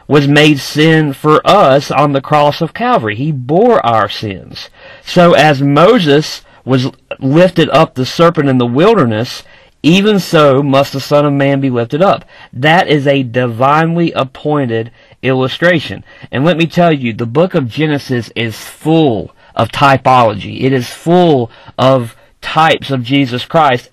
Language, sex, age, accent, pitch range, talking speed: Finnish, male, 40-59, American, 130-160 Hz, 155 wpm